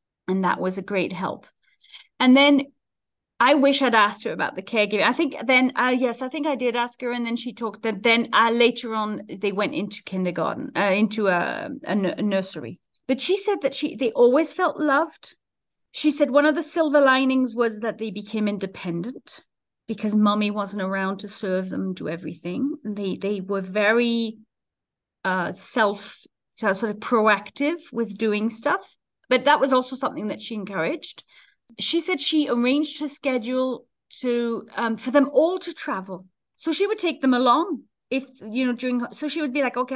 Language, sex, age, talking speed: English, female, 40-59, 190 wpm